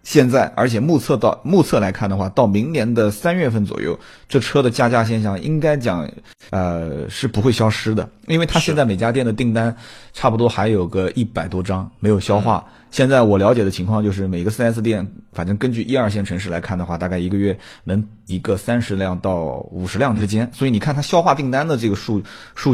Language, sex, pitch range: Chinese, male, 100-130 Hz